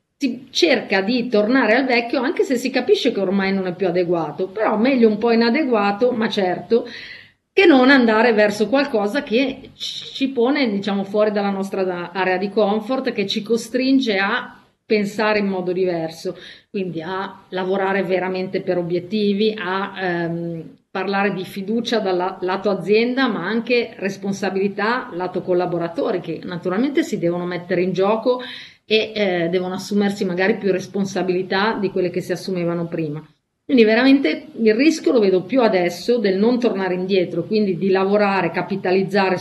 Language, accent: Italian, native